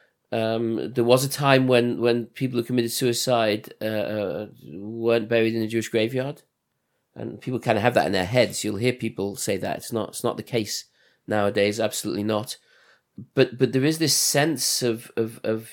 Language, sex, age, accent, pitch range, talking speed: English, male, 40-59, British, 110-130 Hz, 190 wpm